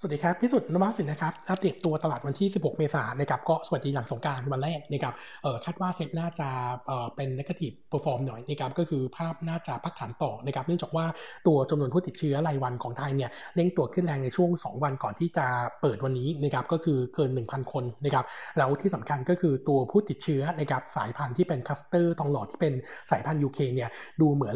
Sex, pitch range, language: male, 135-170 Hz, Thai